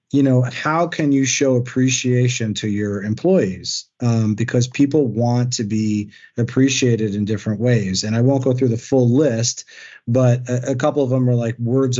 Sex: male